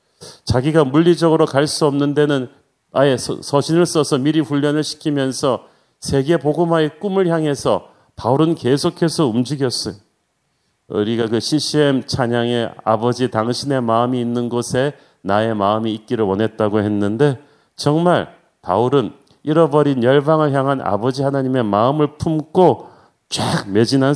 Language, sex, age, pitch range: Korean, male, 40-59, 120-150 Hz